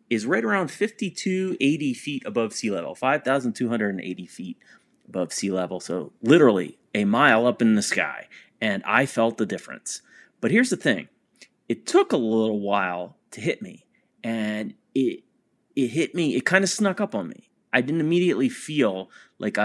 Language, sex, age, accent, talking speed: English, male, 30-49, American, 170 wpm